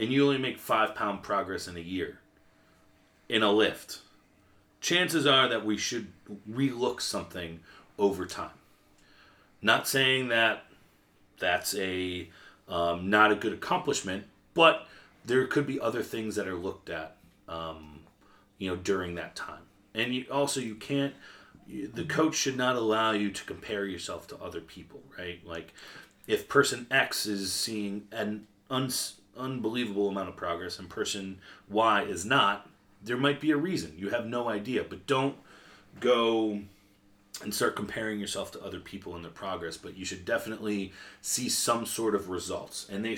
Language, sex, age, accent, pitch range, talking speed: English, male, 30-49, American, 90-115 Hz, 165 wpm